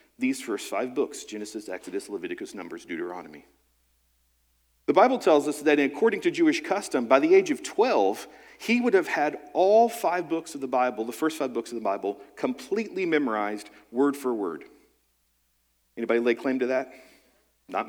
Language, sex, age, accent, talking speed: English, male, 40-59, American, 170 wpm